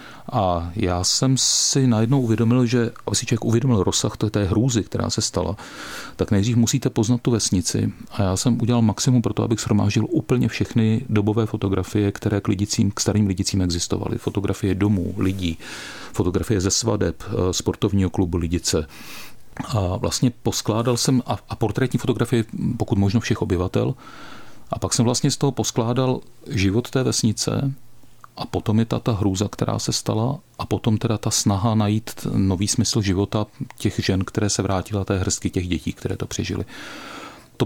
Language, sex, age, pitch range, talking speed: Czech, male, 40-59, 100-120 Hz, 165 wpm